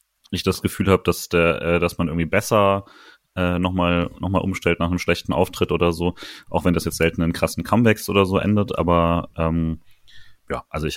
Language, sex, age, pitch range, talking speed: German, male, 30-49, 85-100 Hz, 210 wpm